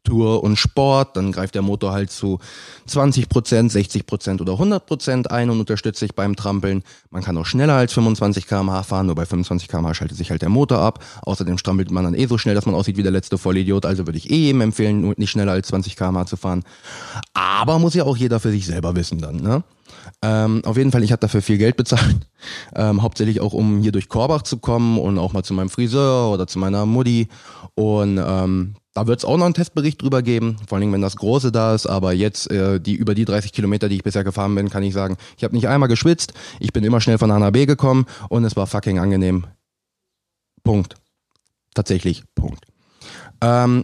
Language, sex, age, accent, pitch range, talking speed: German, male, 20-39, German, 95-120 Hz, 220 wpm